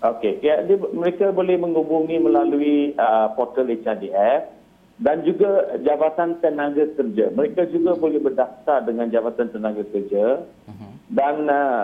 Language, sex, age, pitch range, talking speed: Malay, male, 50-69, 120-170 Hz, 115 wpm